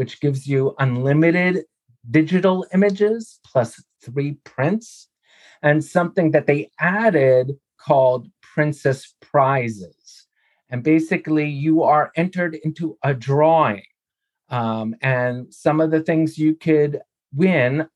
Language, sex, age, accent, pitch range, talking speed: English, male, 30-49, American, 130-165 Hz, 115 wpm